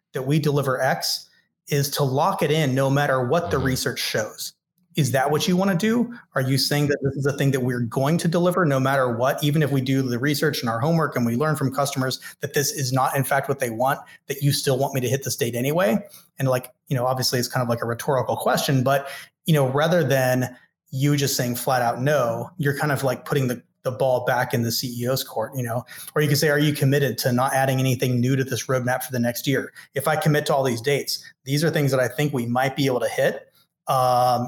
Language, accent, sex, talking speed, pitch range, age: English, American, male, 260 wpm, 125-145 Hz, 30-49